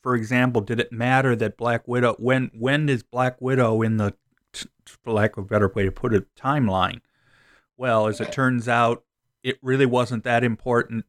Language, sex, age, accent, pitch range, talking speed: English, male, 40-59, American, 105-125 Hz, 190 wpm